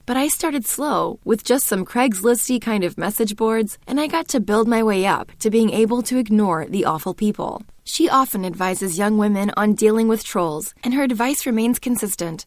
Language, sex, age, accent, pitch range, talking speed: English, female, 20-39, American, 190-250 Hz, 200 wpm